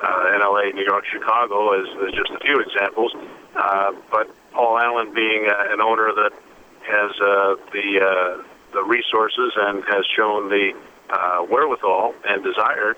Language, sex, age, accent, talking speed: English, male, 50-69, American, 155 wpm